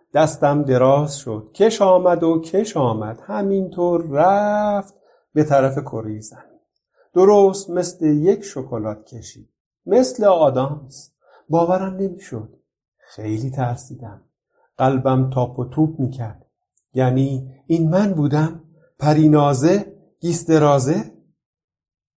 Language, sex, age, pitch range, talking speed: Persian, male, 50-69, 135-185 Hz, 95 wpm